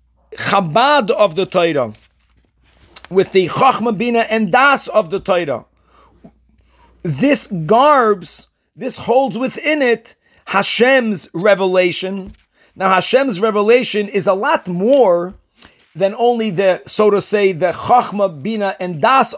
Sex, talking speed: male, 120 wpm